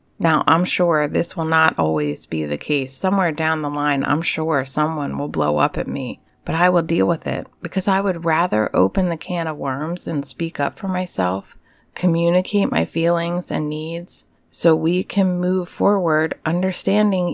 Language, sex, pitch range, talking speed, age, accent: English, female, 145-180 Hz, 185 wpm, 30-49, American